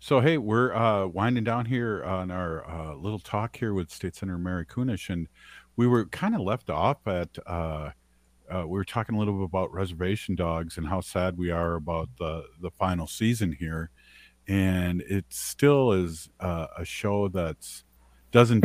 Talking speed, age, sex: 185 wpm, 50-69, male